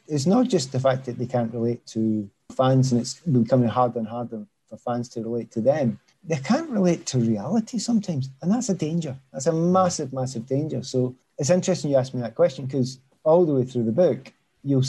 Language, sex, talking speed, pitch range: English, male, 220 wpm, 125-145 Hz